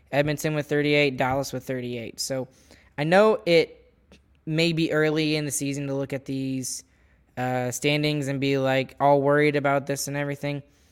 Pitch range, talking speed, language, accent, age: 135-155 Hz, 170 wpm, English, American, 10-29